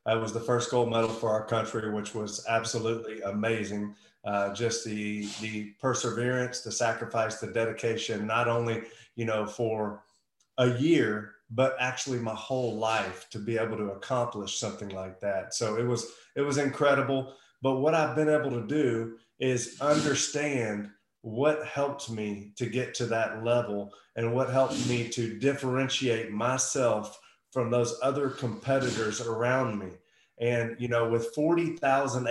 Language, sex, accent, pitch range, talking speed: English, male, American, 110-130 Hz, 155 wpm